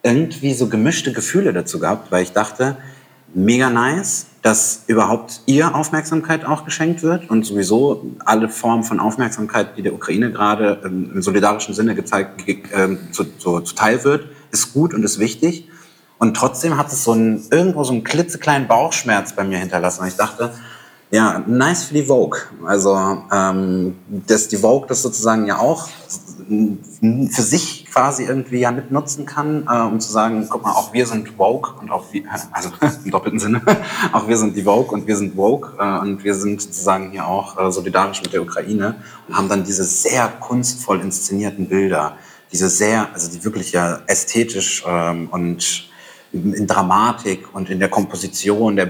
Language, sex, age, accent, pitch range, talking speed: German, male, 30-49, German, 95-130 Hz, 170 wpm